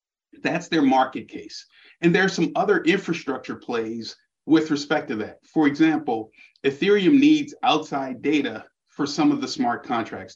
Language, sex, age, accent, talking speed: English, male, 40-59, American, 155 wpm